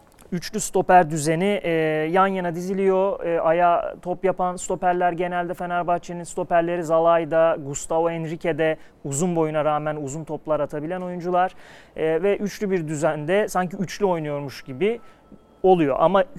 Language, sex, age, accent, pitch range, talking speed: Turkish, male, 30-49, native, 150-180 Hz, 130 wpm